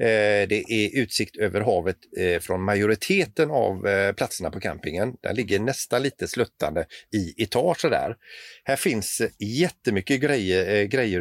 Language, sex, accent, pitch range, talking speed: Swedish, male, native, 100-125 Hz, 130 wpm